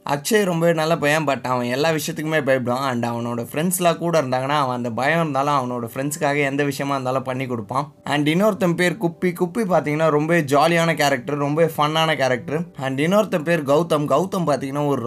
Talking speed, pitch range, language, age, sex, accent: 175 wpm, 135-165 Hz, Tamil, 20-39, male, native